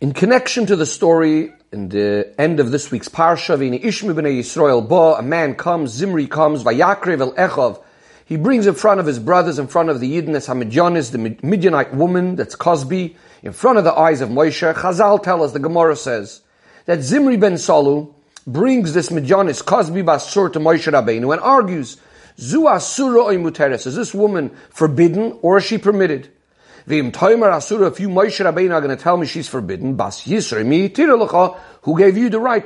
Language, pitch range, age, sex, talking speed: English, 145-205 Hz, 40-59, male, 180 wpm